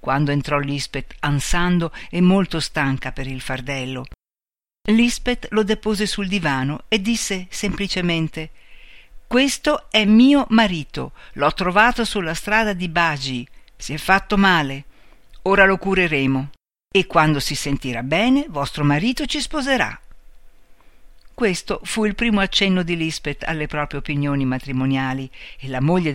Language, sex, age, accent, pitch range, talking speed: Italian, female, 50-69, native, 135-195 Hz, 135 wpm